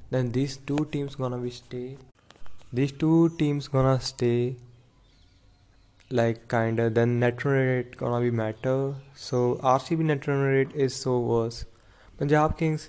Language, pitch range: English, 115-130 Hz